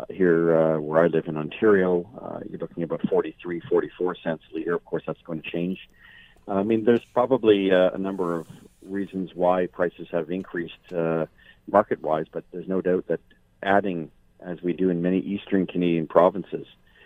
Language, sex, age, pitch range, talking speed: English, male, 50-69, 80-90 Hz, 185 wpm